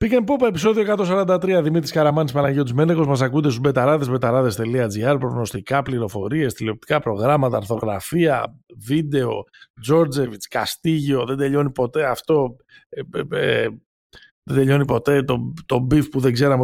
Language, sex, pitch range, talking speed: Greek, male, 110-155 Hz, 130 wpm